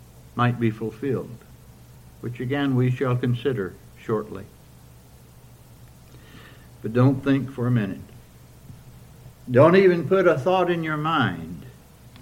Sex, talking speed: male, 115 wpm